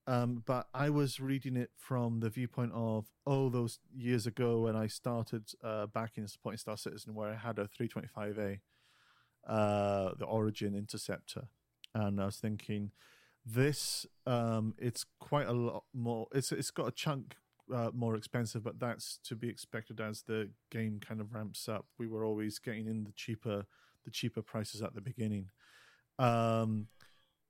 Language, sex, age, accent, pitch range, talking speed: English, male, 40-59, British, 110-125 Hz, 170 wpm